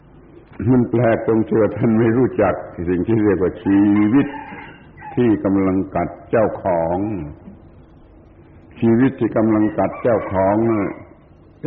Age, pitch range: 70-89, 90-115 Hz